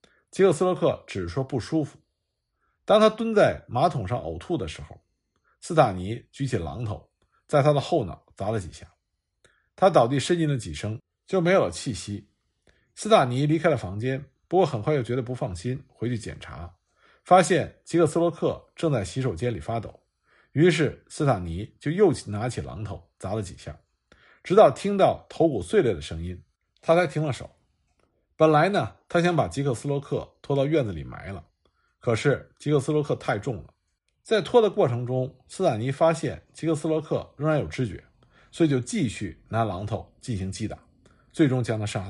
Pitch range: 105-160 Hz